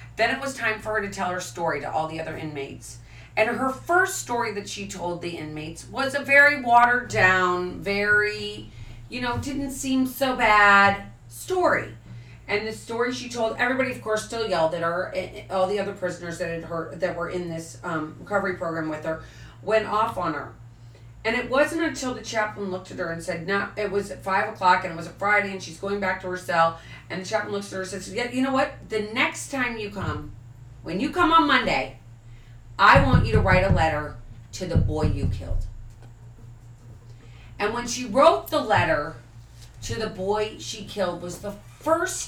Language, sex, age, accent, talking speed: English, female, 40-59, American, 210 wpm